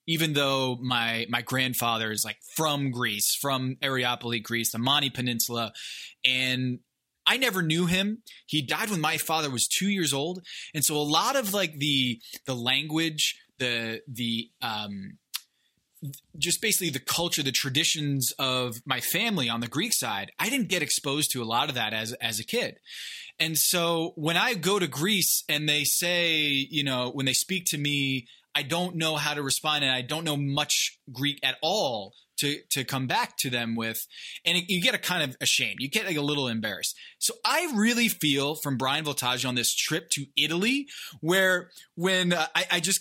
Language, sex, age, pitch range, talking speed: English, male, 20-39, 130-175 Hz, 195 wpm